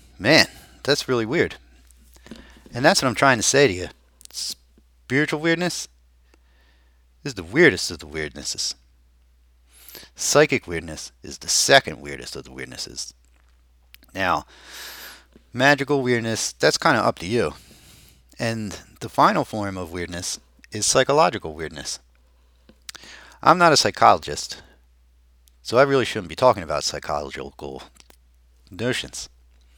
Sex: male